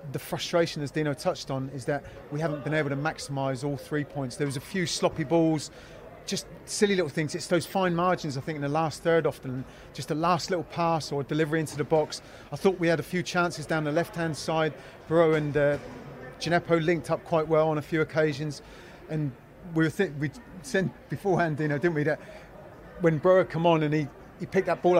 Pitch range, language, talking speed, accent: 145-175 Hz, English, 230 wpm, British